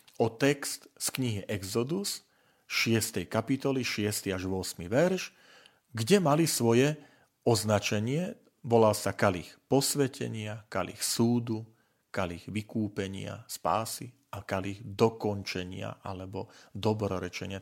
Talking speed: 100 wpm